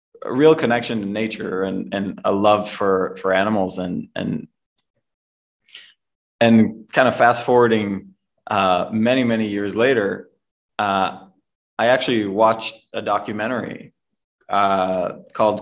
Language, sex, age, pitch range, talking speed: English, male, 20-39, 105-120 Hz, 120 wpm